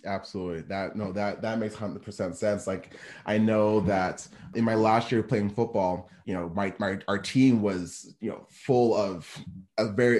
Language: English